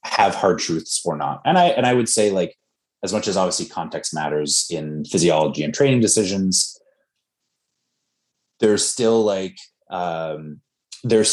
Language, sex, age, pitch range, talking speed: English, male, 30-49, 85-115 Hz, 150 wpm